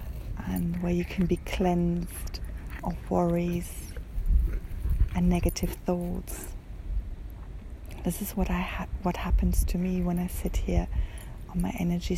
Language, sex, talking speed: English, female, 135 wpm